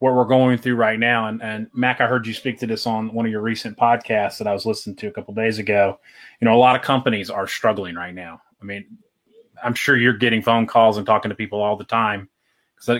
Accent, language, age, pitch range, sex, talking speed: American, English, 30-49, 110-130 Hz, male, 265 wpm